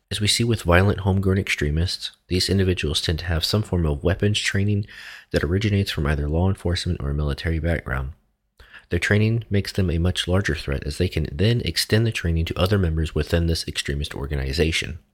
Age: 30-49